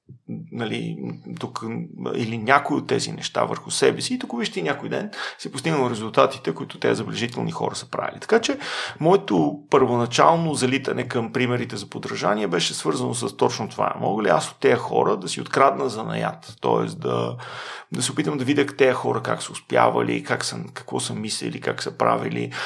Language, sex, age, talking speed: Bulgarian, male, 40-59, 185 wpm